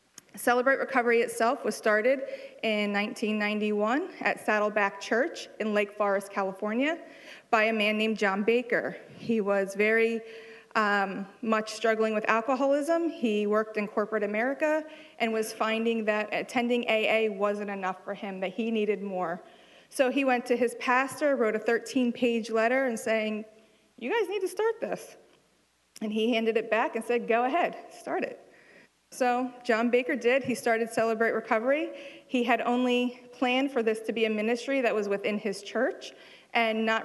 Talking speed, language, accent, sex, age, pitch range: 165 wpm, English, American, female, 40-59, 215-245 Hz